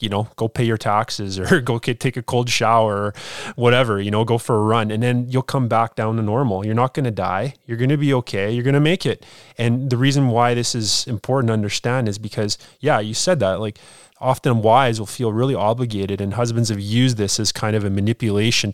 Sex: male